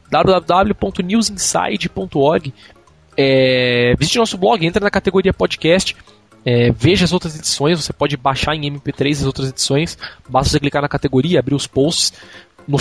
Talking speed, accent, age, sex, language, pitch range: 145 wpm, Brazilian, 20-39, male, Portuguese, 135-190 Hz